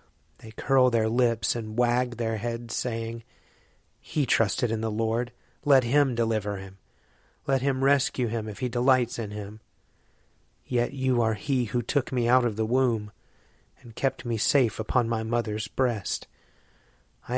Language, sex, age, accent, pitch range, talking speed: English, male, 30-49, American, 110-125 Hz, 160 wpm